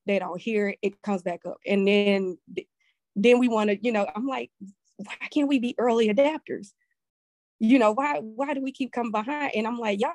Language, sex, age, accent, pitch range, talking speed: English, female, 20-39, American, 190-235 Hz, 215 wpm